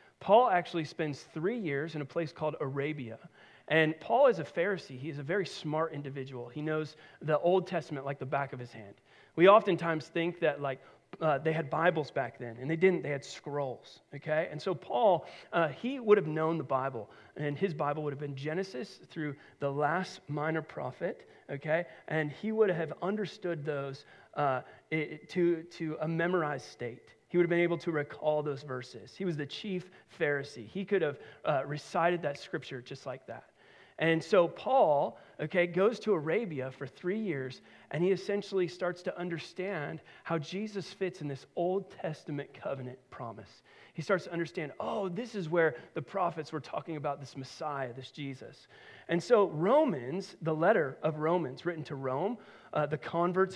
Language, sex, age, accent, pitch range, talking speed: English, male, 40-59, American, 145-180 Hz, 185 wpm